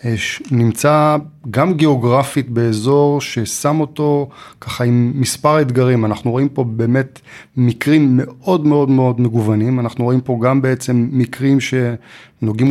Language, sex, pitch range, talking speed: Hebrew, male, 115-135 Hz, 125 wpm